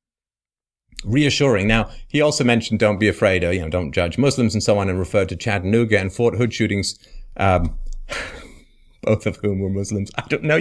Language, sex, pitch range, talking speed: English, male, 95-135 Hz, 190 wpm